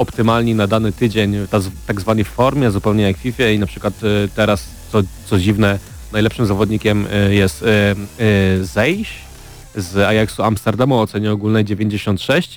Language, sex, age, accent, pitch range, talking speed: Polish, male, 30-49, native, 100-115 Hz, 135 wpm